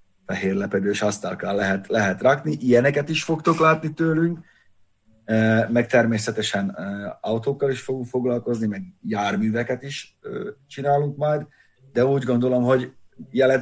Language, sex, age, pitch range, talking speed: Hungarian, male, 30-49, 105-140 Hz, 115 wpm